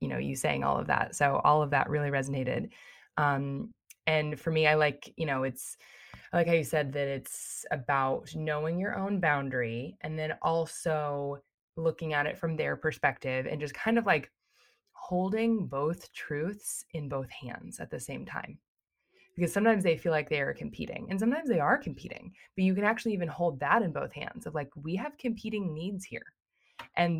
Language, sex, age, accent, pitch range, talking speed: English, female, 20-39, American, 145-175 Hz, 195 wpm